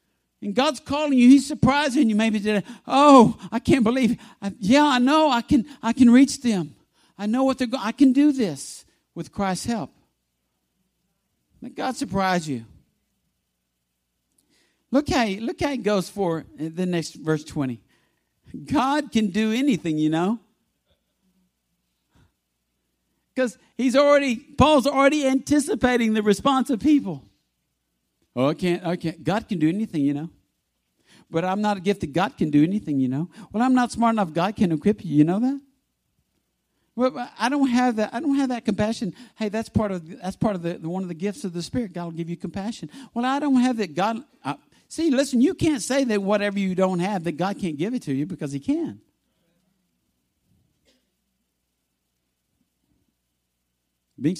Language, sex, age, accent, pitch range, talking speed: English, male, 60-79, American, 150-250 Hz, 175 wpm